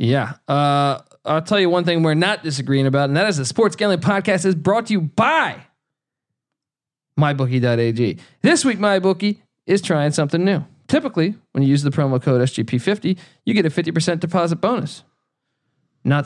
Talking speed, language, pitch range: 170 wpm, English, 135-185 Hz